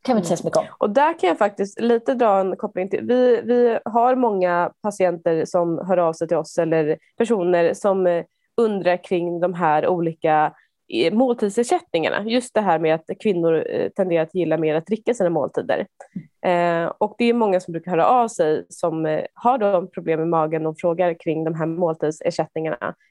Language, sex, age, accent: Swedish, female, 20-39, native